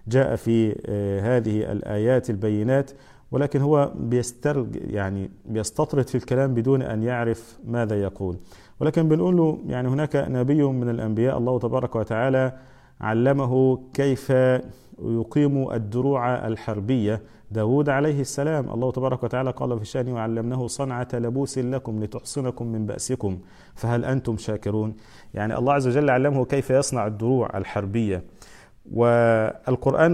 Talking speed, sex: 120 wpm, male